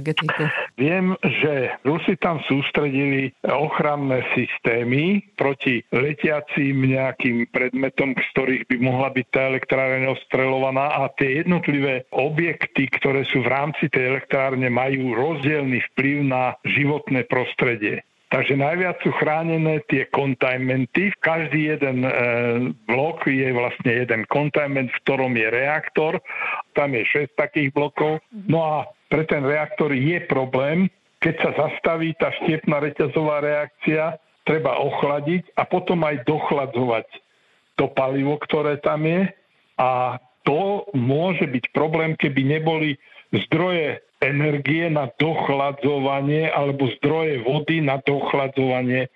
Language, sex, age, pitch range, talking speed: Slovak, male, 60-79, 130-155 Hz, 120 wpm